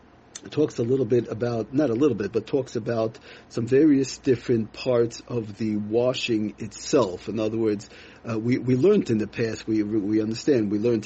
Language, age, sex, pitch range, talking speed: English, 40-59, male, 110-130 Hz, 190 wpm